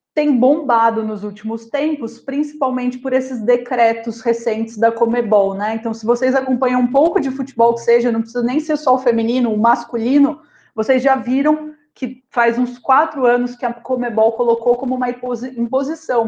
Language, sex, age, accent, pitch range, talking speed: Portuguese, female, 30-49, Brazilian, 220-270 Hz, 175 wpm